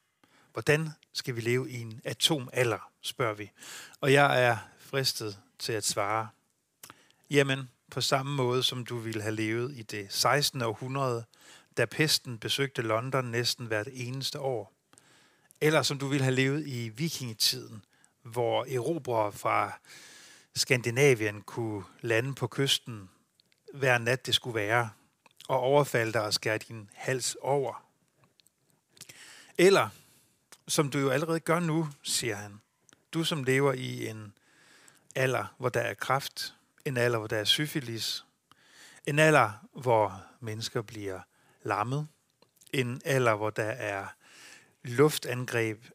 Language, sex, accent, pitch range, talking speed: Danish, male, native, 115-140 Hz, 135 wpm